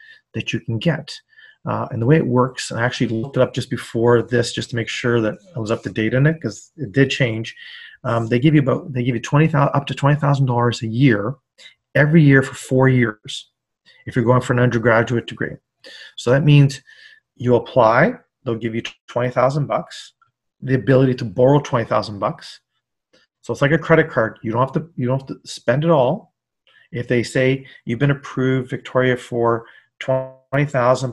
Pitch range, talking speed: 120-145 Hz, 210 wpm